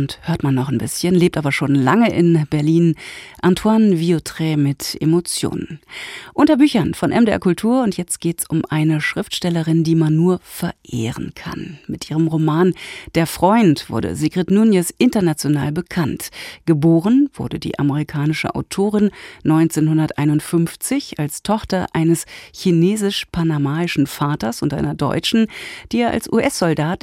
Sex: female